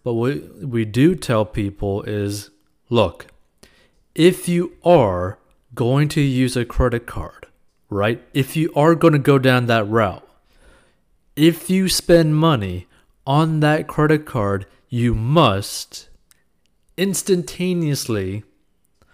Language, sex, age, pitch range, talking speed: English, male, 30-49, 115-155 Hz, 120 wpm